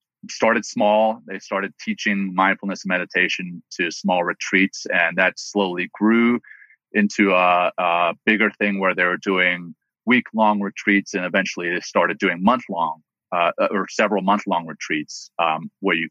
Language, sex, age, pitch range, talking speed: English, male, 30-49, 95-105 Hz, 140 wpm